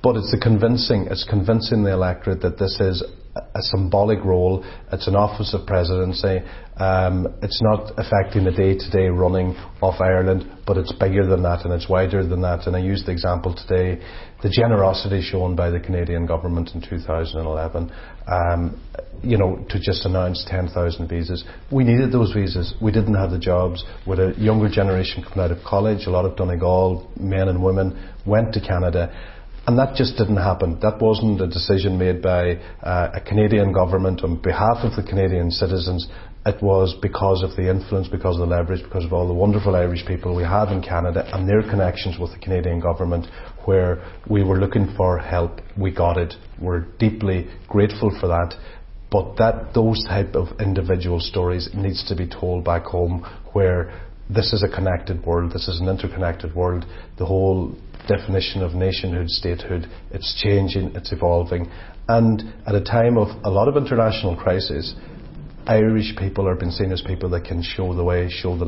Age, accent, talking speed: 40-59, Irish, 180 wpm